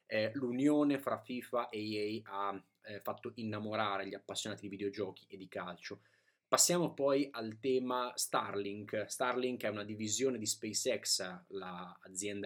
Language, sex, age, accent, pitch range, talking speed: Italian, male, 20-39, native, 105-130 Hz, 135 wpm